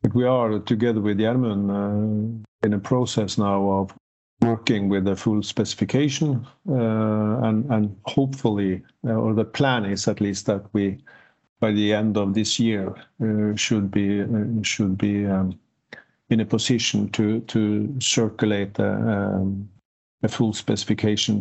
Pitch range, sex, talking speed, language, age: 105-120 Hz, male, 145 wpm, English, 50-69